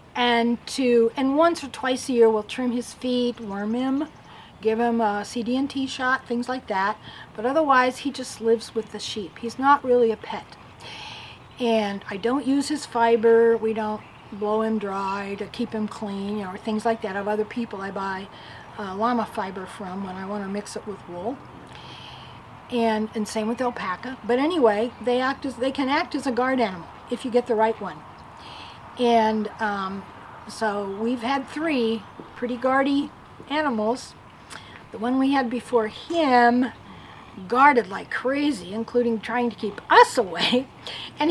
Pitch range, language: 210-255 Hz, English